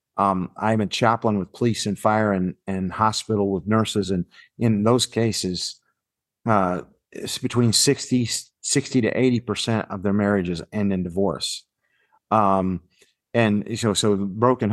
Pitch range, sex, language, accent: 100-115 Hz, male, English, American